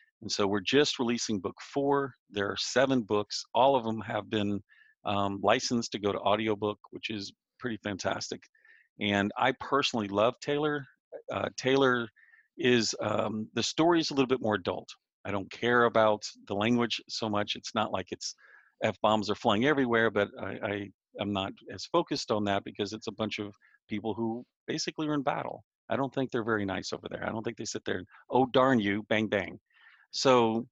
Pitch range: 105-125 Hz